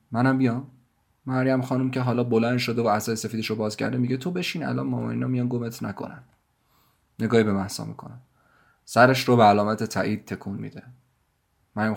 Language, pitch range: Persian, 110-130 Hz